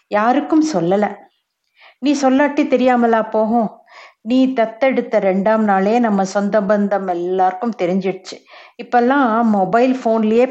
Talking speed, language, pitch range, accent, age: 95 wpm, Tamil, 180-230 Hz, native, 50-69